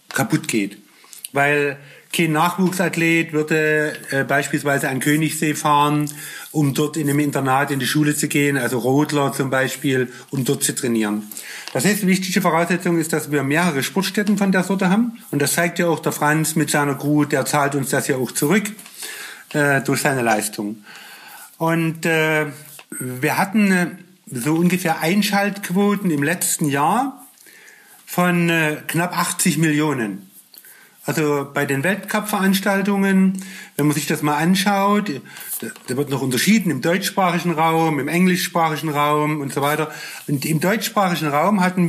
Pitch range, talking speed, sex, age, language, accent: 145-185 Hz, 150 wpm, male, 50-69, German, German